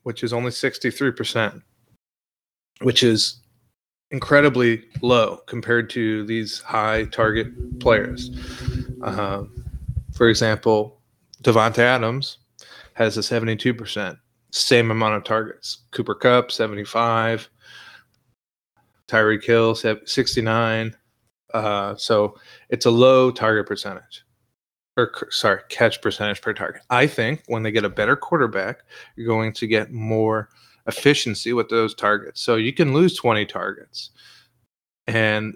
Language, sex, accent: English, male, American